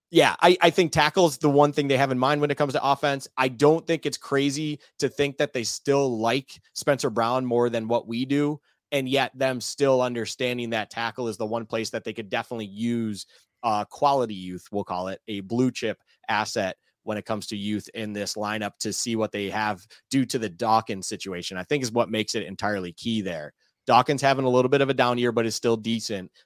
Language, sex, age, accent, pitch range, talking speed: English, male, 30-49, American, 105-125 Hz, 230 wpm